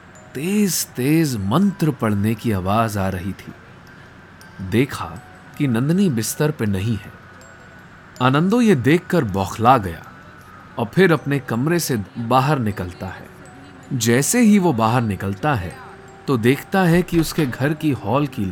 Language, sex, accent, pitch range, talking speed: Hindi, male, native, 100-160 Hz, 145 wpm